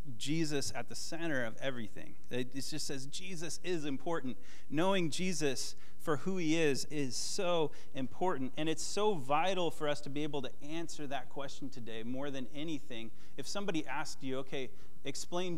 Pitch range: 130-165 Hz